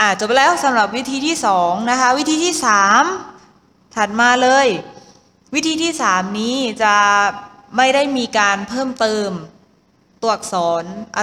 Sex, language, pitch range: female, Thai, 205-265 Hz